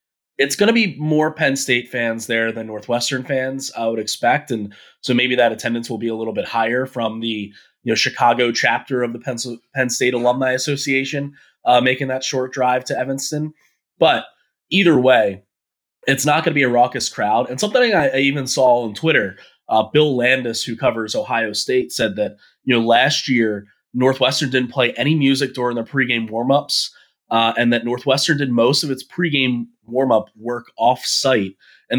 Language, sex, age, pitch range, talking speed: English, male, 20-39, 115-140 Hz, 185 wpm